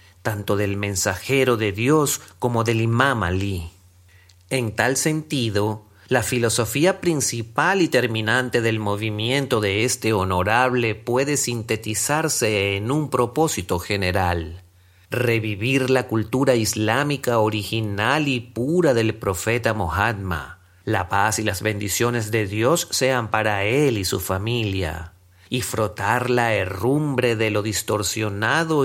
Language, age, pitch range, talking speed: Spanish, 40-59, 100-125 Hz, 120 wpm